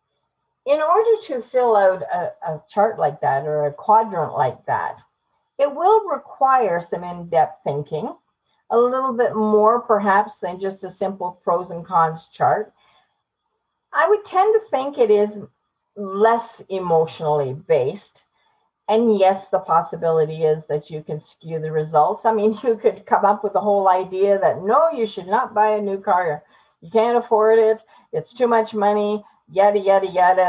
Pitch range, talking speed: 165-225 Hz, 165 wpm